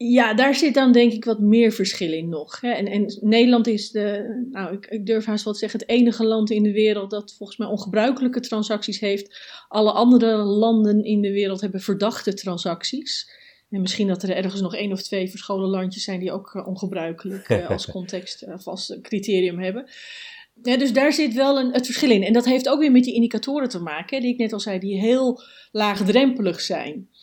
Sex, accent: female, Dutch